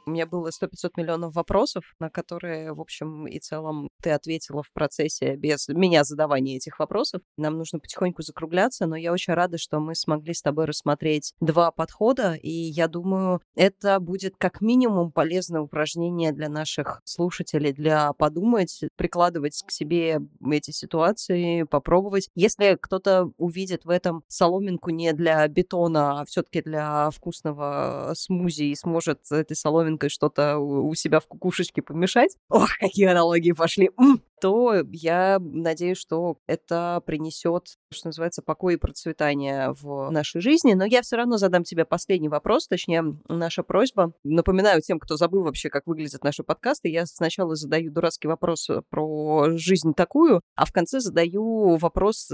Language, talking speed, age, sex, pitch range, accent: Russian, 150 wpm, 20-39, female, 155-180 Hz, native